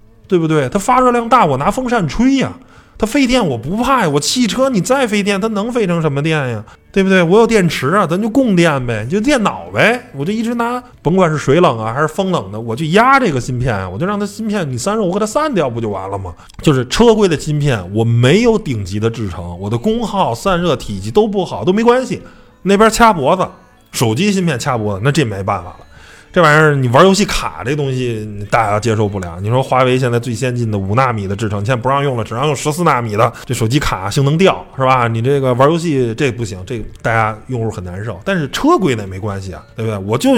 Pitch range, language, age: 115-185 Hz, Chinese, 20-39